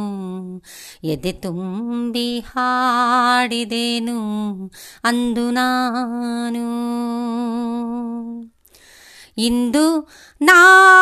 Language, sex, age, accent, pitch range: Kannada, female, 30-49, native, 235-360 Hz